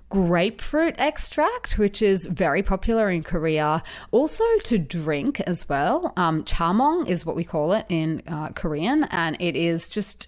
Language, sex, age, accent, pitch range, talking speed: English, female, 30-49, Australian, 165-225 Hz, 160 wpm